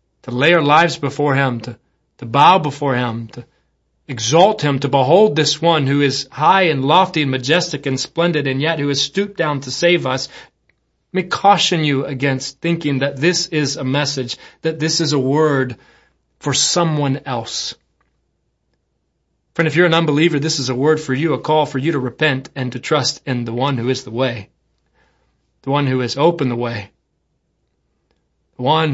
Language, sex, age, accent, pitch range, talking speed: English, male, 30-49, American, 130-155 Hz, 185 wpm